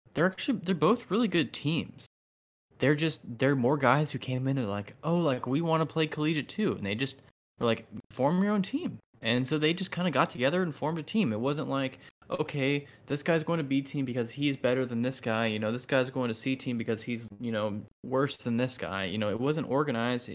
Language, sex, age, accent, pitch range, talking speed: English, male, 10-29, American, 105-135 Hz, 245 wpm